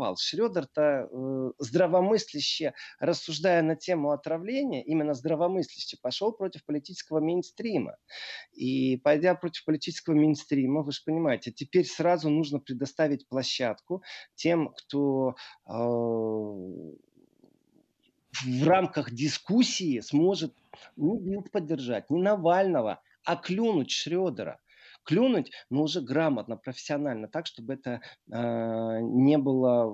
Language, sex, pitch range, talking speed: Russian, male, 135-180 Hz, 100 wpm